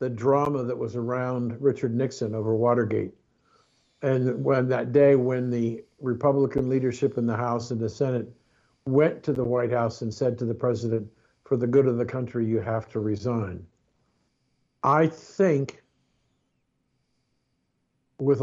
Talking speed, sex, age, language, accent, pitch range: 150 wpm, male, 60-79, English, American, 120-140 Hz